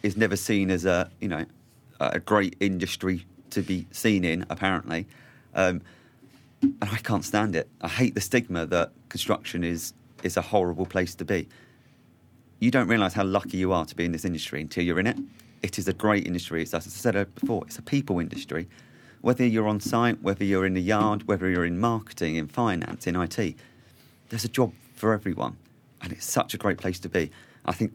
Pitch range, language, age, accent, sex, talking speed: 90-120 Hz, English, 30-49, British, male, 205 wpm